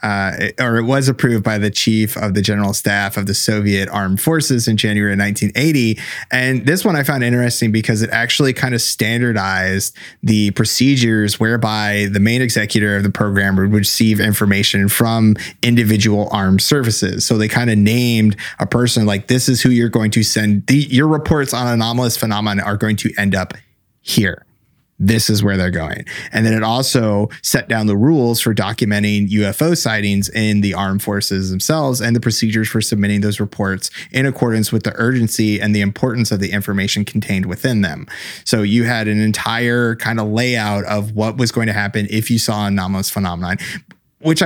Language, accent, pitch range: English, American, 105-125 Hz